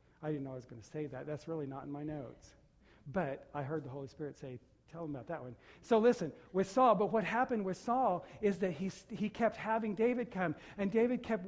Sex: male